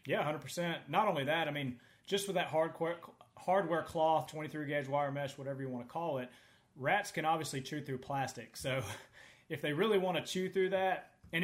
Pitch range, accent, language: 125-155 Hz, American, English